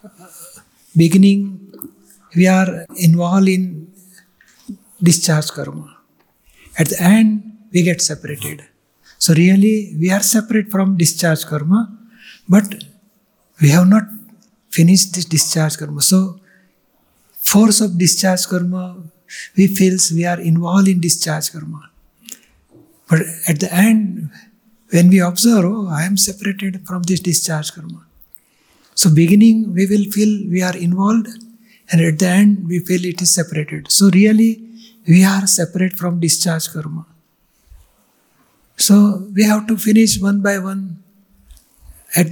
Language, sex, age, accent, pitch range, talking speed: Gujarati, male, 60-79, native, 170-205 Hz, 130 wpm